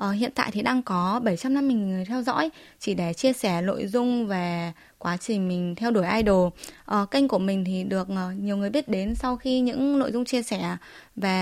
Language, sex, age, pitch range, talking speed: Vietnamese, female, 20-39, 195-255 Hz, 225 wpm